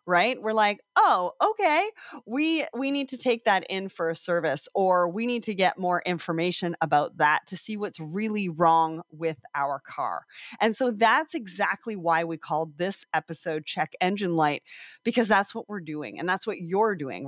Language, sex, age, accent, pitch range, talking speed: English, female, 30-49, American, 170-230 Hz, 190 wpm